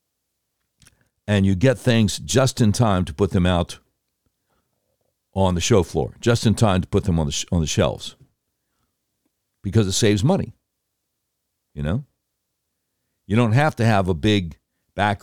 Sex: male